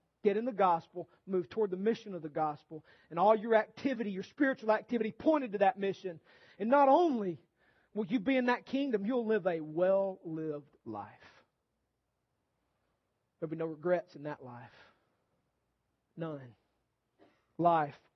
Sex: male